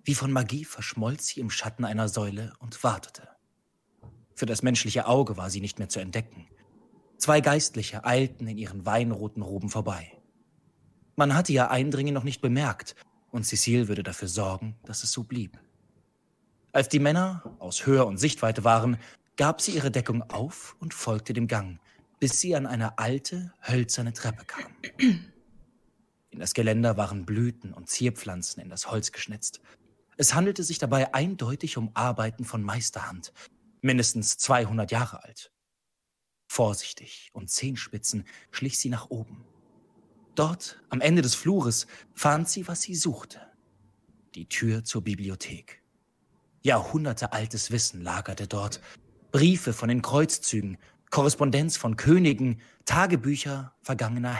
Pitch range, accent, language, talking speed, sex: 110-140 Hz, German, German, 140 wpm, male